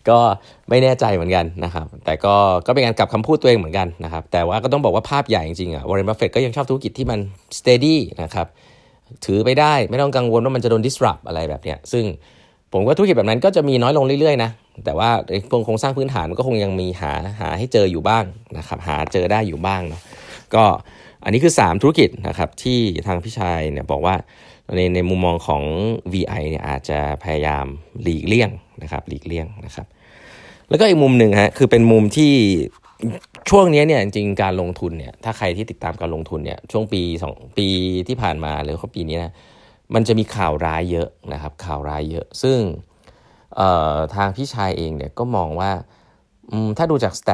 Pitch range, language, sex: 85-115 Hz, Thai, male